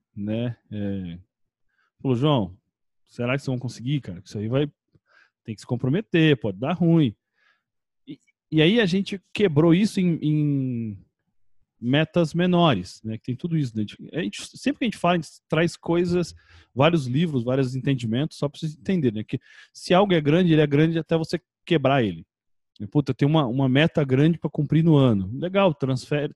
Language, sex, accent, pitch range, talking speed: Portuguese, male, Brazilian, 120-165 Hz, 185 wpm